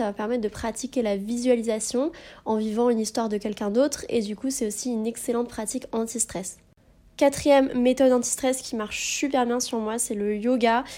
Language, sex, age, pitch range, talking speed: French, female, 20-39, 220-255 Hz, 195 wpm